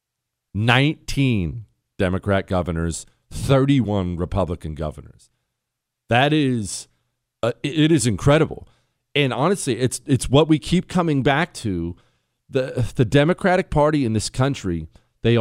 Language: English